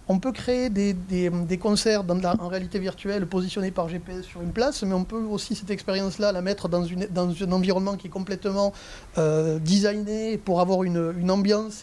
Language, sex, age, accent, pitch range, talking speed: French, male, 30-49, French, 185-215 Hz, 210 wpm